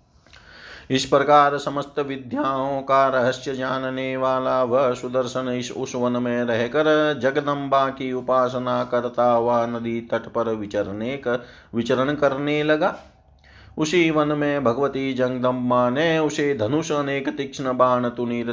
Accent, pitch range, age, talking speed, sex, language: native, 115-140 Hz, 30-49, 130 wpm, male, Hindi